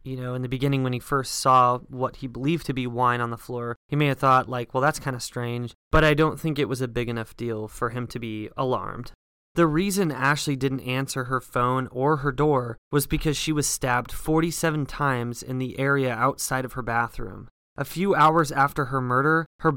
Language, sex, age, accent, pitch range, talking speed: English, male, 20-39, American, 125-150 Hz, 225 wpm